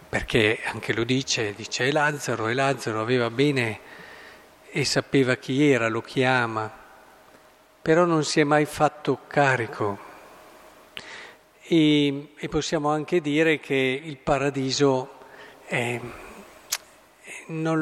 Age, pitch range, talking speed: 50-69, 120-150 Hz, 105 wpm